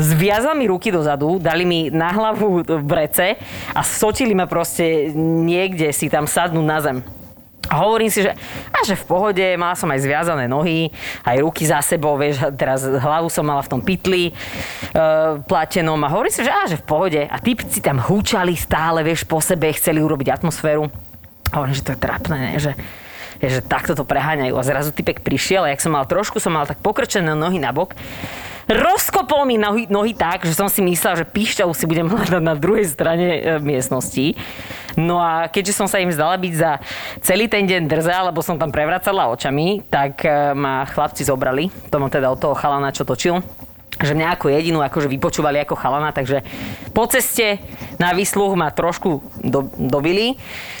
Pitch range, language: 145-185 Hz, Slovak